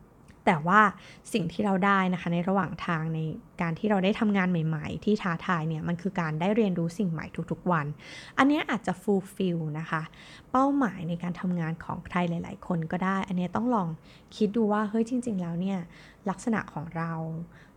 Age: 20-39